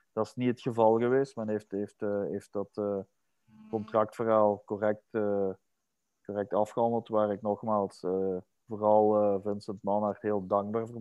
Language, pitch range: Dutch, 100-115 Hz